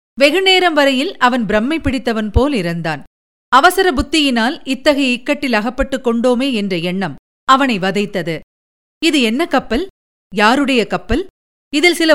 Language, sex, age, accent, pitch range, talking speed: Tamil, female, 50-69, native, 215-310 Hz, 120 wpm